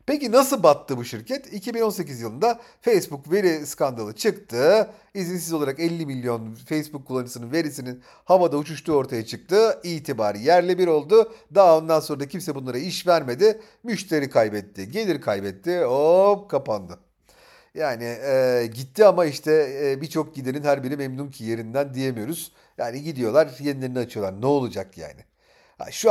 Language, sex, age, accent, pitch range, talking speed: Turkish, male, 40-59, native, 120-175 Hz, 145 wpm